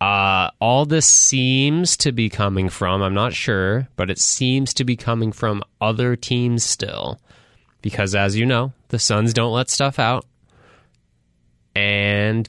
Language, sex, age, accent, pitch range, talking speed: English, male, 20-39, American, 95-120 Hz, 155 wpm